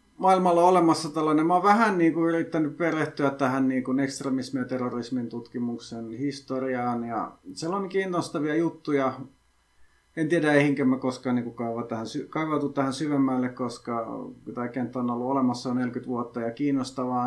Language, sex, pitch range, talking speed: Finnish, male, 115-140 Hz, 145 wpm